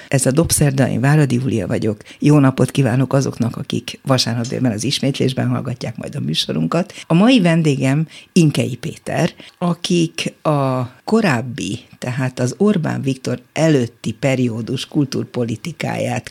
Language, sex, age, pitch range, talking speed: Hungarian, female, 60-79, 125-155 Hz, 125 wpm